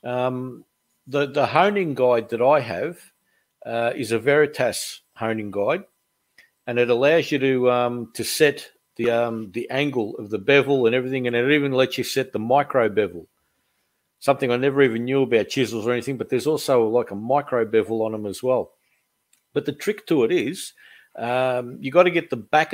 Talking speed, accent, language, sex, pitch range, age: 195 wpm, Australian, English, male, 115-140 Hz, 50-69